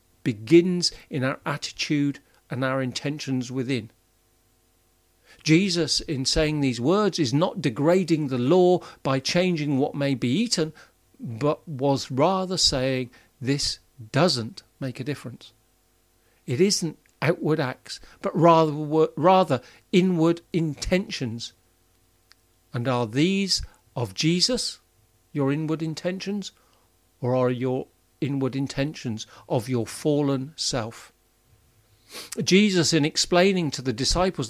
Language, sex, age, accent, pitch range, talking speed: English, male, 50-69, British, 120-160 Hz, 115 wpm